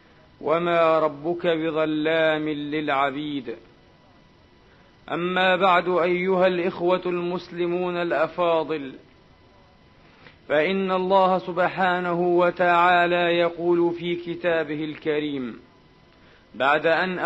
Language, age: Arabic, 40-59